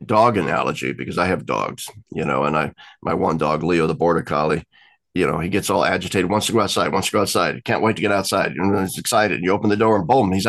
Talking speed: 255 wpm